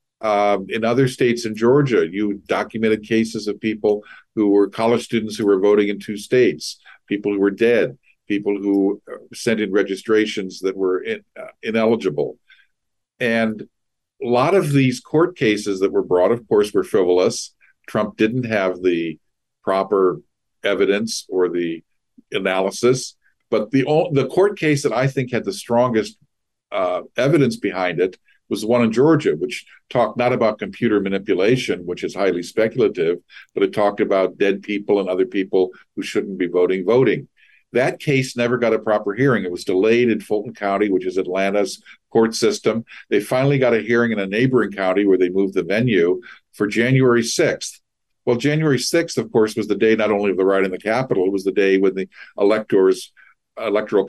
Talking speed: 180 wpm